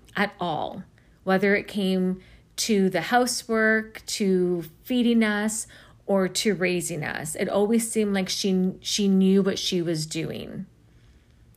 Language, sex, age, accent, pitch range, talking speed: English, female, 40-59, American, 180-235 Hz, 135 wpm